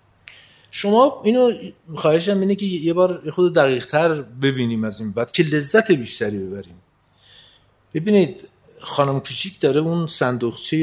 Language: Persian